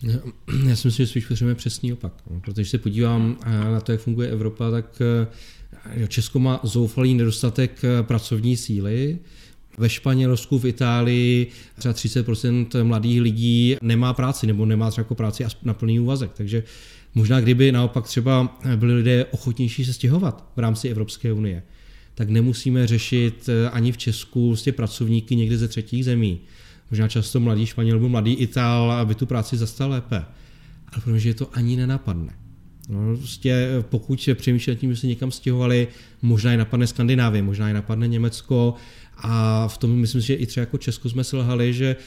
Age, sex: 30-49, male